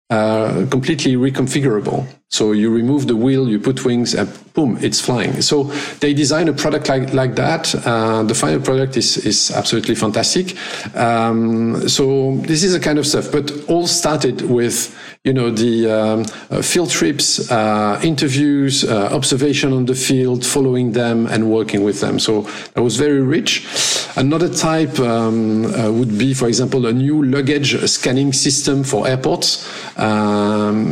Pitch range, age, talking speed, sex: 110-135 Hz, 50-69, 165 wpm, male